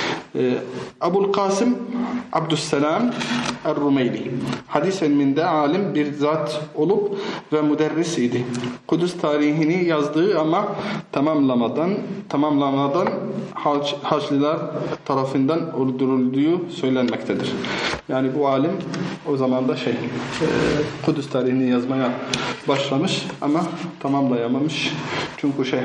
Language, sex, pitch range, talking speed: Turkish, male, 130-155 Hz, 90 wpm